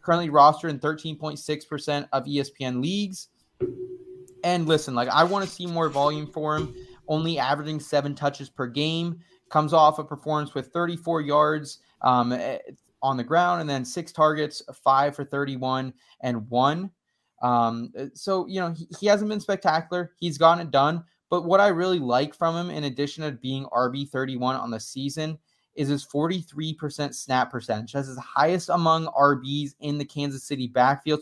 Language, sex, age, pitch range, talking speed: English, male, 20-39, 140-170 Hz, 170 wpm